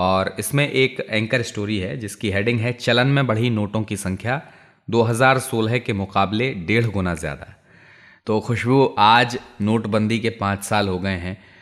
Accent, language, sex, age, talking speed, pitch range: native, Hindi, male, 30-49, 165 wpm, 100-125 Hz